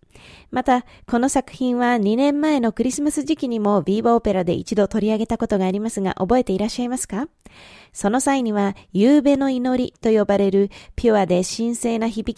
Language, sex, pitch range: Japanese, female, 200-260 Hz